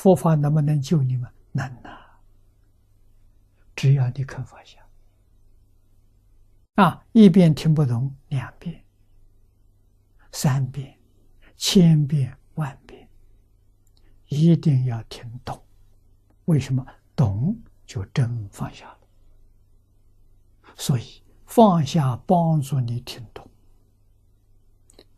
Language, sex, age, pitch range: Chinese, male, 60-79, 100-140 Hz